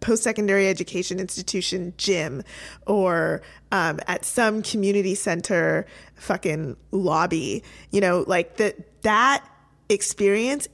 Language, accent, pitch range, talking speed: English, American, 195-245 Hz, 95 wpm